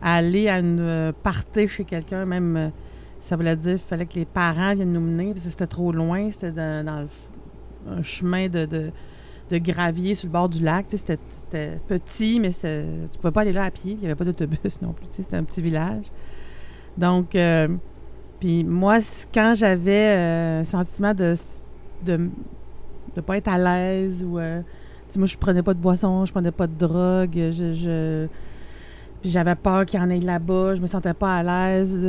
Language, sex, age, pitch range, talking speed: French, female, 30-49, 165-190 Hz, 215 wpm